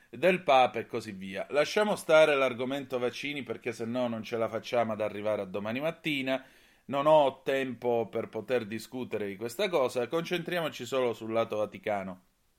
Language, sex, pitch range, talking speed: Italian, male, 110-140 Hz, 165 wpm